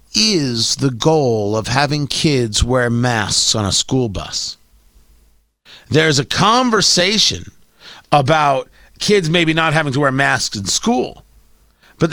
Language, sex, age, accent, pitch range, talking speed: English, male, 40-59, American, 145-215 Hz, 130 wpm